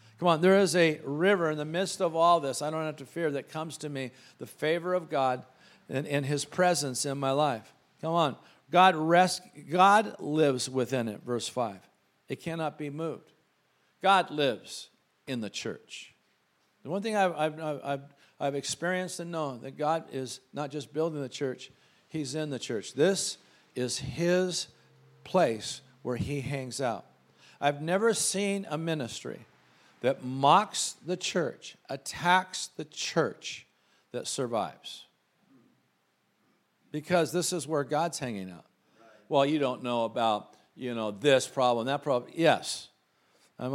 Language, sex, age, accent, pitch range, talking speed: English, male, 50-69, American, 125-165 Hz, 160 wpm